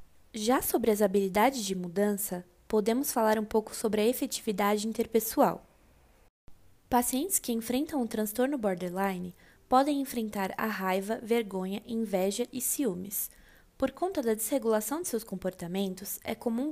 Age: 20-39